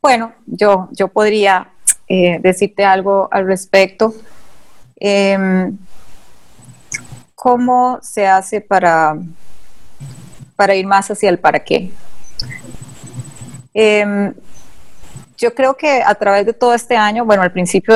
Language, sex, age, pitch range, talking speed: Spanish, female, 30-49, 180-210 Hz, 115 wpm